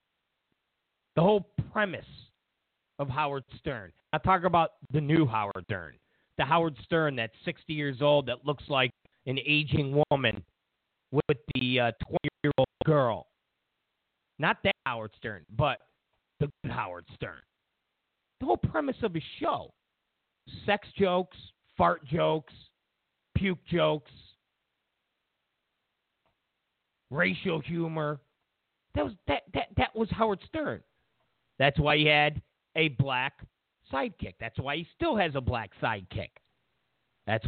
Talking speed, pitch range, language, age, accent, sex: 125 wpm, 110-160 Hz, English, 40-59, American, male